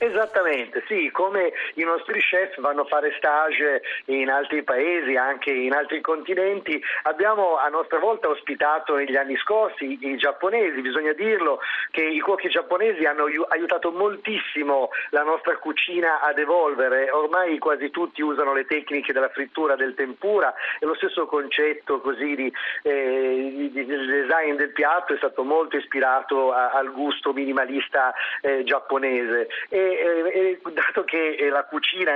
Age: 40-59